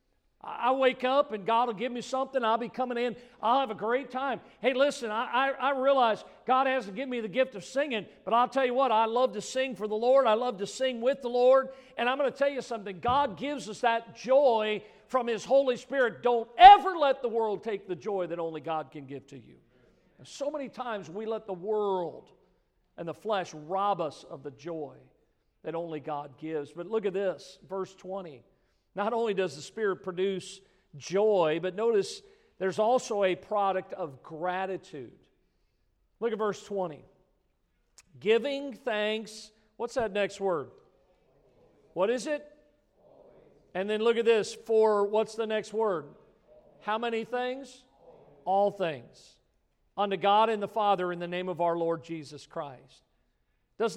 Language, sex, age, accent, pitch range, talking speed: English, male, 50-69, American, 190-250 Hz, 180 wpm